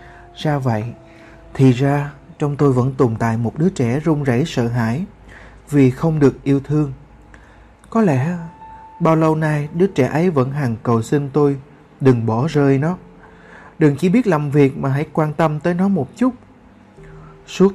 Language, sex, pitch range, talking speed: Vietnamese, male, 125-160 Hz, 175 wpm